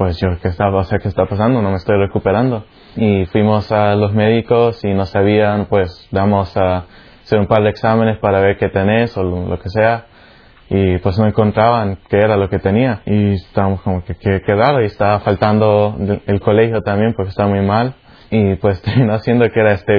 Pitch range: 95-110 Hz